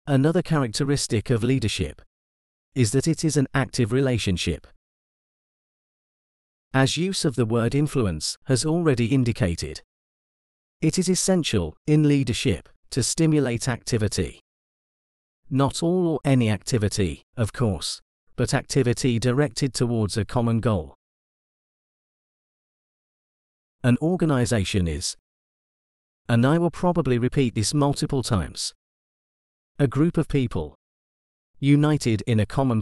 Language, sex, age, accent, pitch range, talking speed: English, male, 40-59, British, 95-145 Hz, 110 wpm